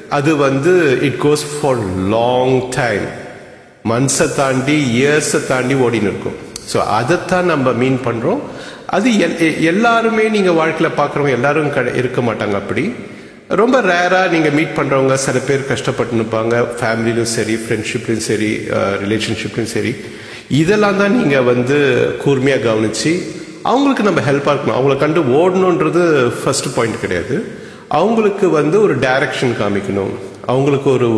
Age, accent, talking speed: 50-69, Indian, 60 wpm